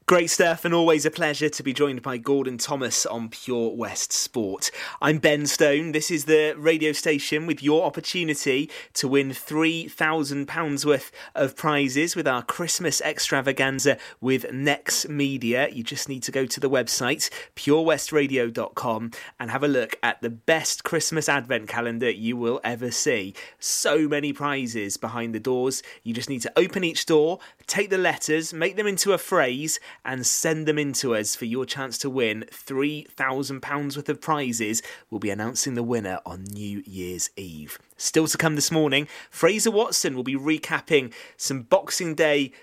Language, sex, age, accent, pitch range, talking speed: English, male, 30-49, British, 120-155 Hz, 170 wpm